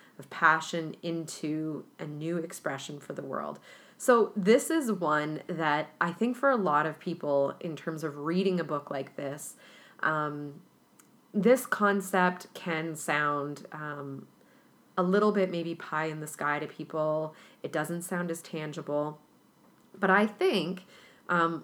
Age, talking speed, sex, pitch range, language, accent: 30-49, 150 wpm, female, 150-185 Hz, English, American